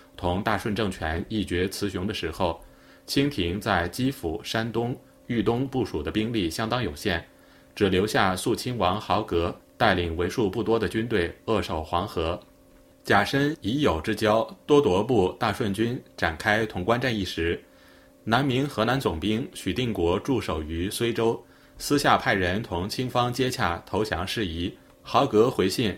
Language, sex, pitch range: Chinese, male, 90-115 Hz